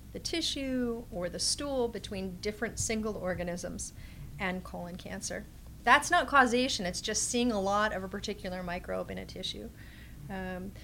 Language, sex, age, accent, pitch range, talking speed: English, female, 30-49, American, 180-220 Hz, 155 wpm